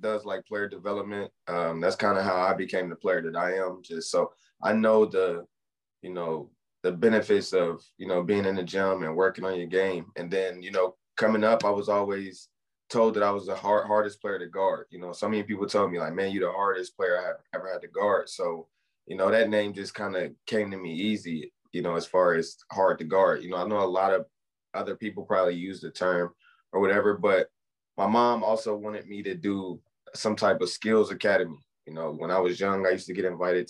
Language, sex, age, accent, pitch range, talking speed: English, male, 20-39, American, 95-110 Hz, 240 wpm